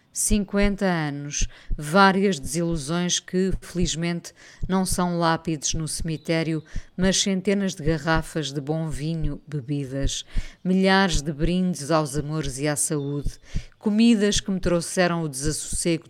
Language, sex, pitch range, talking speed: Portuguese, female, 150-180 Hz, 125 wpm